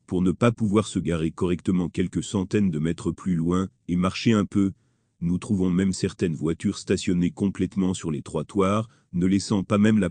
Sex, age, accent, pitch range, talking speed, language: male, 40-59, French, 85-100 Hz, 190 wpm, French